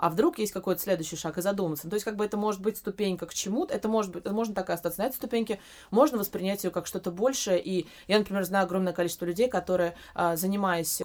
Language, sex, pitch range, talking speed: Russian, female, 175-210 Hz, 240 wpm